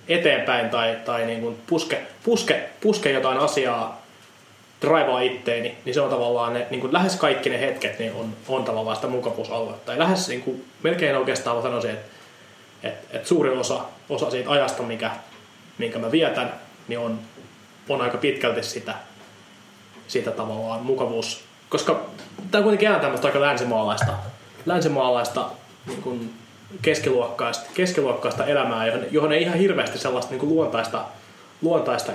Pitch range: 115-155 Hz